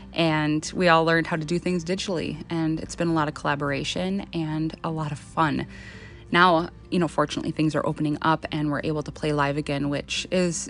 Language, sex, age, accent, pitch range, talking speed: English, female, 20-39, American, 150-170 Hz, 215 wpm